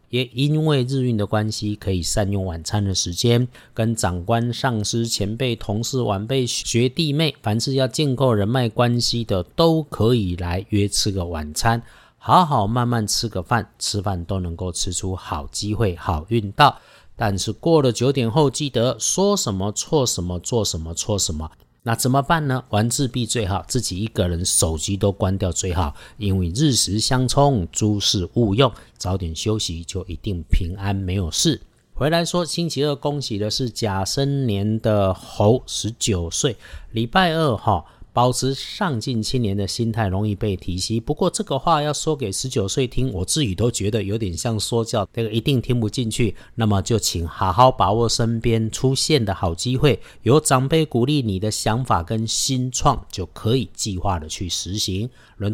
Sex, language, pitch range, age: male, Chinese, 100-125 Hz, 50-69